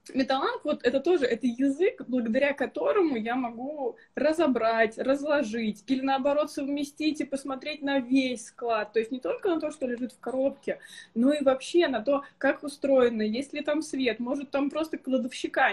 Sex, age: female, 20-39